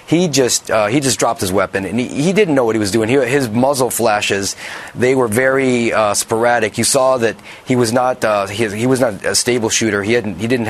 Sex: male